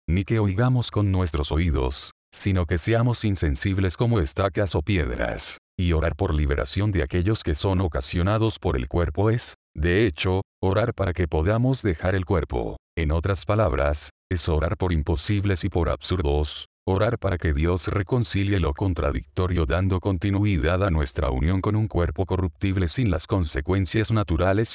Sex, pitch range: male, 85-105 Hz